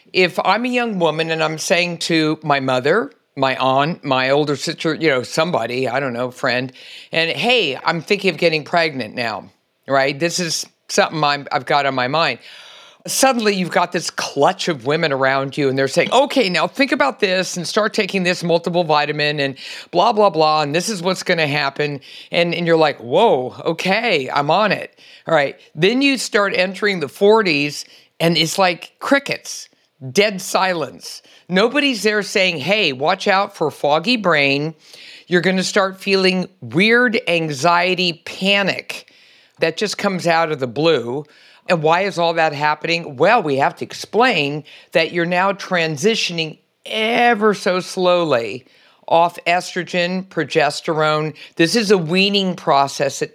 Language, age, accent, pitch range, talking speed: English, 50-69, American, 150-190 Hz, 165 wpm